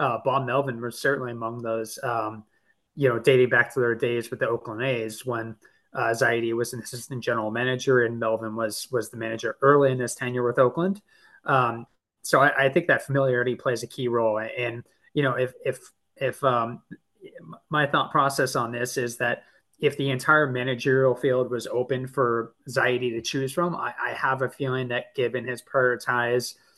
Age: 20-39